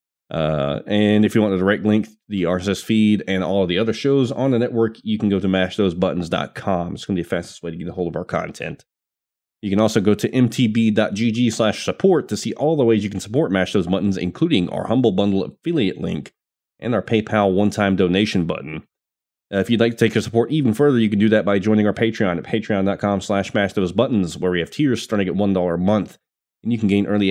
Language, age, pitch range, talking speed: English, 30-49, 95-115 Hz, 235 wpm